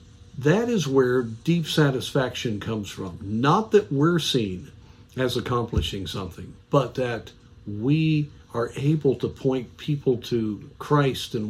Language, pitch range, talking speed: English, 105-140 Hz, 130 wpm